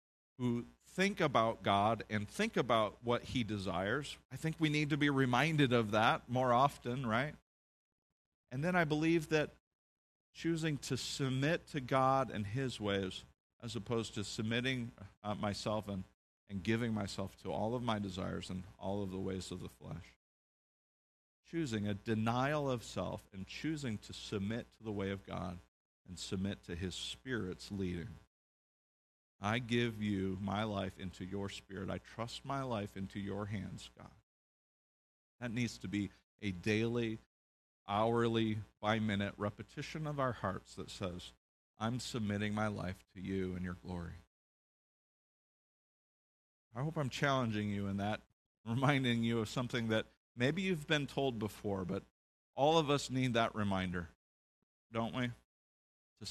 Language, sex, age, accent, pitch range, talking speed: English, male, 50-69, American, 95-125 Hz, 155 wpm